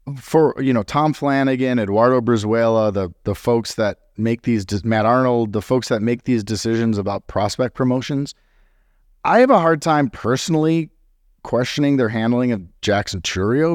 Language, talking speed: English, 155 wpm